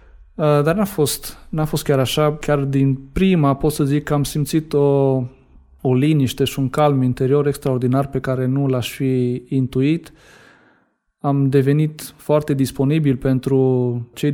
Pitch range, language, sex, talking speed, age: 130-155 Hz, Romanian, male, 145 wpm, 20-39